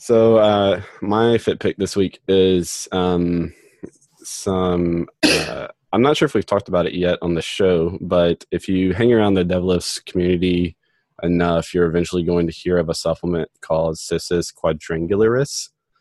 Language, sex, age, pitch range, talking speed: English, male, 20-39, 85-95 Hz, 160 wpm